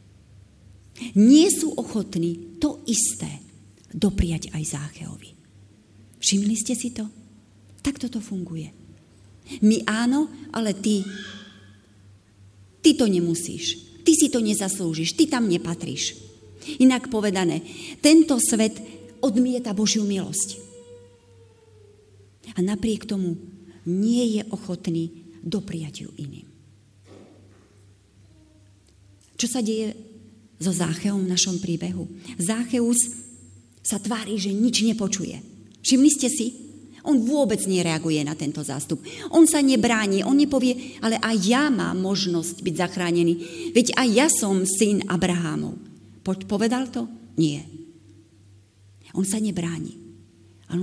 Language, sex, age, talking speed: Slovak, female, 40-59, 110 wpm